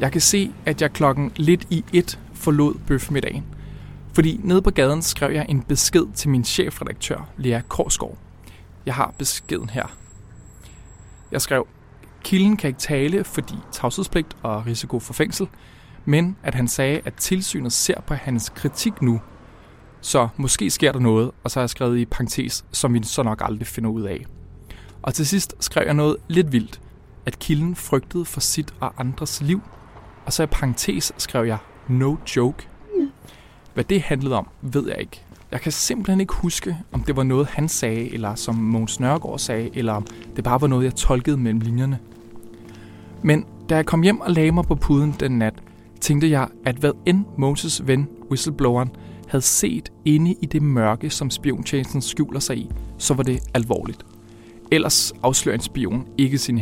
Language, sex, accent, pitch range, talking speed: Danish, male, native, 115-155 Hz, 180 wpm